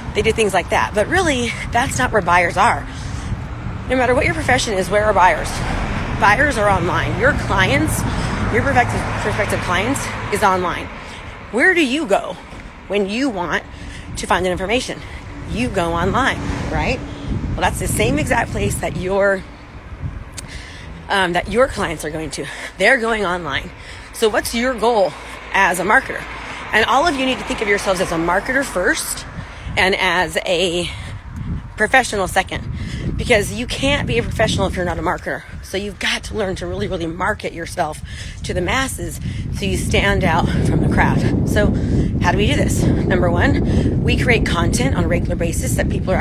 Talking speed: 180 wpm